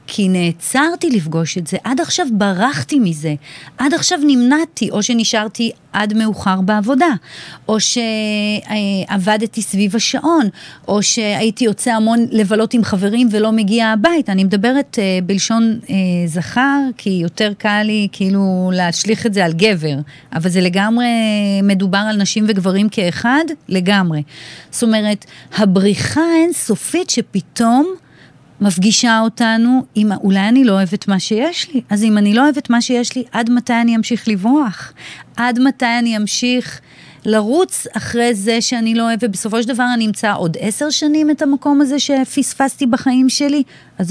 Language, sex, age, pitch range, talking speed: Hebrew, female, 40-59, 195-255 Hz, 145 wpm